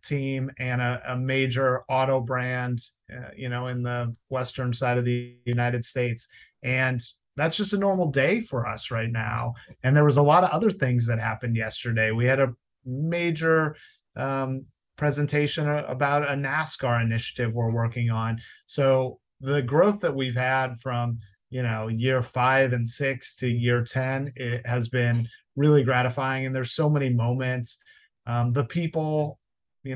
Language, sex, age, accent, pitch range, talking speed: English, male, 30-49, American, 120-135 Hz, 165 wpm